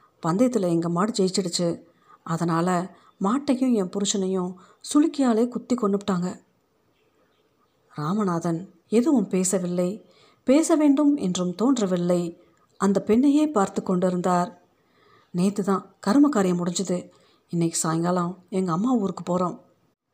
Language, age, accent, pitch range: Tamil, 50-69, native, 180-230 Hz